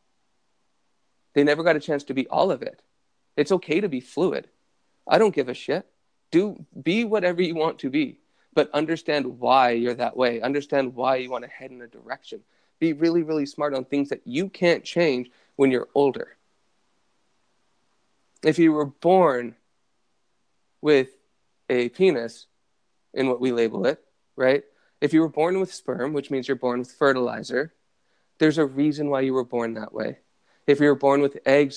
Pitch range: 125-155 Hz